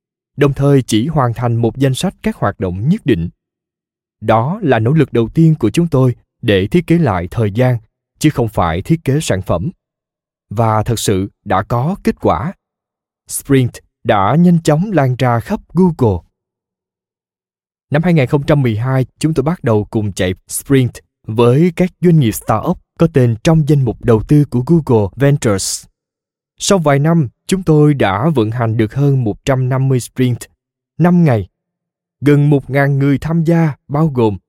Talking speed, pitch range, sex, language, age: 165 wpm, 115-160 Hz, male, Vietnamese, 20-39